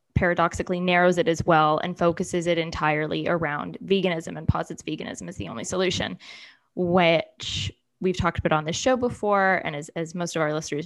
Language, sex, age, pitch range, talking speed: English, female, 10-29, 165-195 Hz, 180 wpm